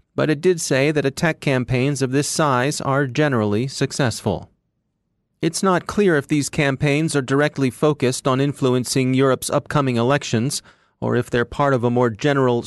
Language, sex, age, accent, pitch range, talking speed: English, male, 40-59, American, 120-150 Hz, 165 wpm